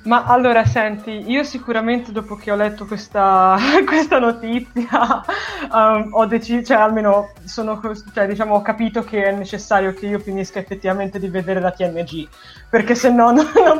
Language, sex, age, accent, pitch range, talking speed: Italian, female, 20-39, native, 190-235 Hz, 165 wpm